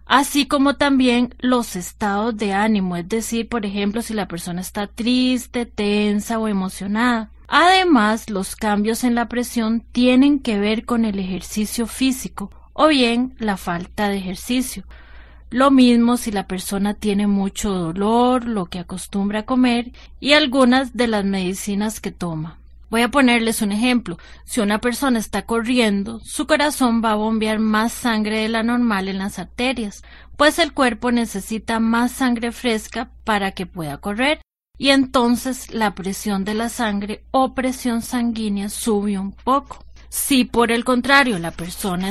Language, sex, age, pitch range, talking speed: Spanish, female, 30-49, 205-245 Hz, 160 wpm